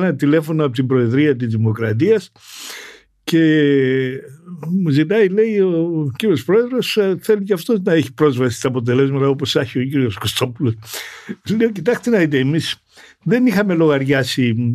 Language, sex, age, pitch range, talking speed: Greek, male, 60-79, 130-190 Hz, 140 wpm